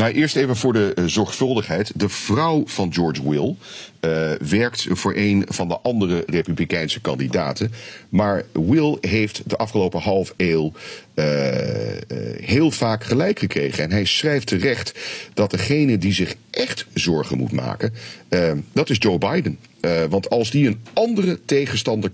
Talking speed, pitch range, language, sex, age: 155 wpm, 90-125 Hz, Dutch, male, 40-59